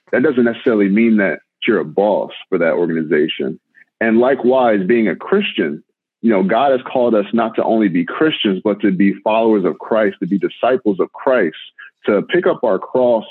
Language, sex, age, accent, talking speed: English, male, 40-59, American, 195 wpm